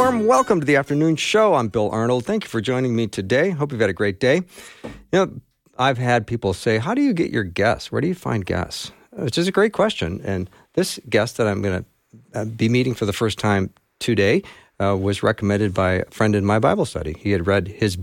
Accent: American